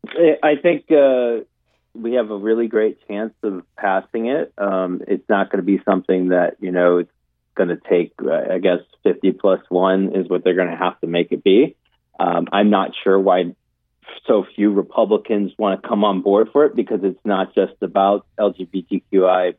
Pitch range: 95-110 Hz